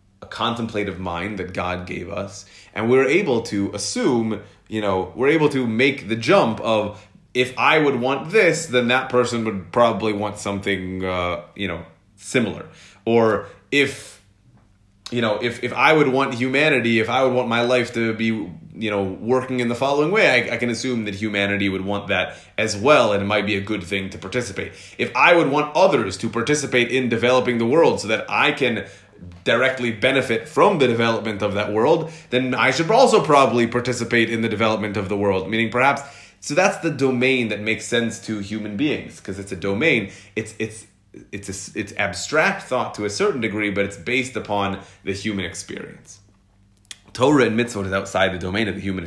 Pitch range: 100-125 Hz